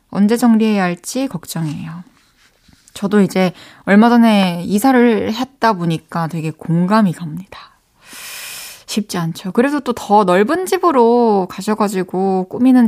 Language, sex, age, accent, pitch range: Korean, female, 20-39, native, 185-265 Hz